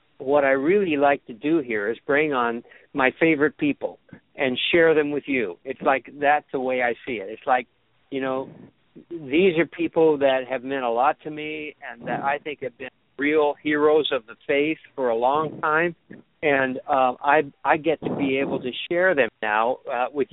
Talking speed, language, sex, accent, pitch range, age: 205 wpm, English, male, American, 135-170 Hz, 60-79